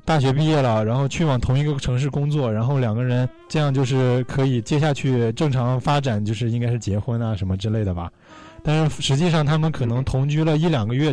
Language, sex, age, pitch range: Chinese, male, 20-39, 120-155 Hz